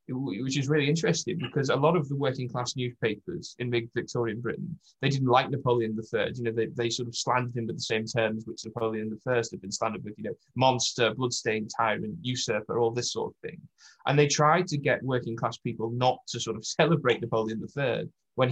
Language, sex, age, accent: English, male, 20-39, British